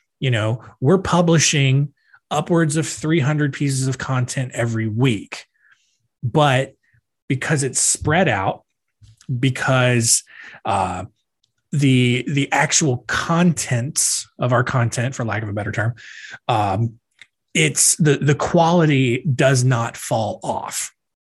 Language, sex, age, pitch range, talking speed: English, male, 20-39, 120-150 Hz, 115 wpm